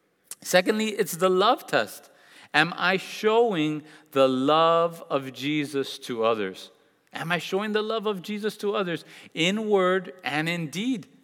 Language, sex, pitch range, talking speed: English, male, 150-190 Hz, 150 wpm